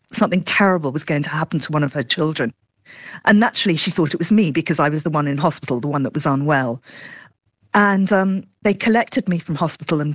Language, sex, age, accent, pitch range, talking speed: English, female, 40-59, British, 140-170 Hz, 225 wpm